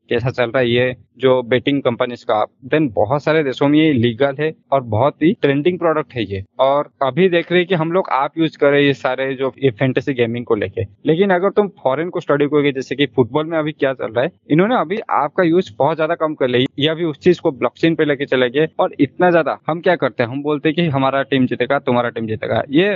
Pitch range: 130-160 Hz